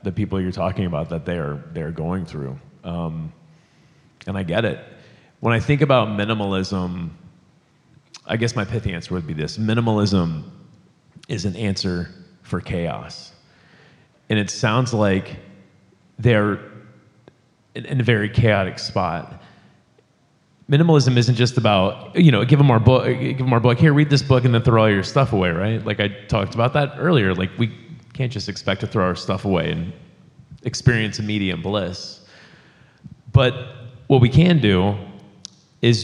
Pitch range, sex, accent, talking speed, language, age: 95-125 Hz, male, American, 160 wpm, English, 30-49